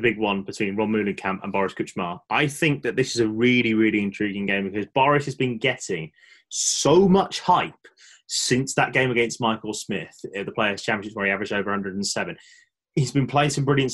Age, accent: 20-39, British